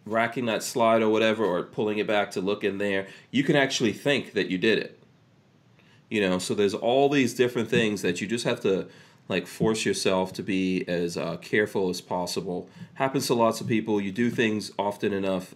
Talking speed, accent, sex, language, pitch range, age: 210 wpm, American, male, English, 100-140 Hz, 30-49